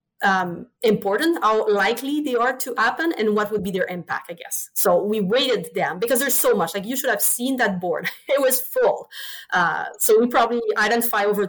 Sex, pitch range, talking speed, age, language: female, 195-255 Hz, 210 wpm, 30-49, English